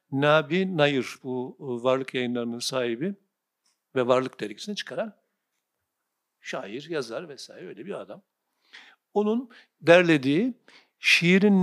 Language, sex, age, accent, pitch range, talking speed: Turkish, male, 60-79, native, 130-200 Hz, 105 wpm